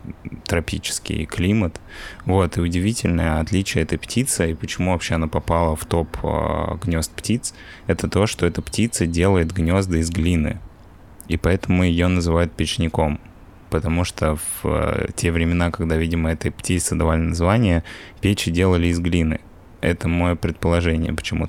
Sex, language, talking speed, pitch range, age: male, Russian, 145 wpm, 80-95 Hz, 20-39